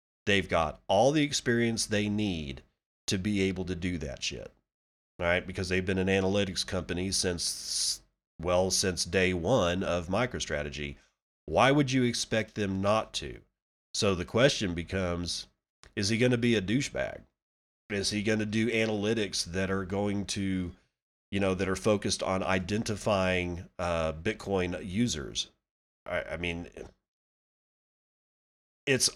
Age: 30-49